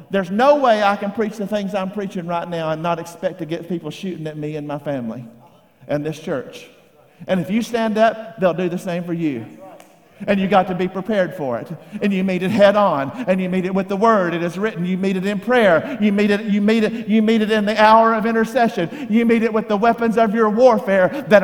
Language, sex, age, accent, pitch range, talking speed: English, male, 50-69, American, 200-260 Hz, 255 wpm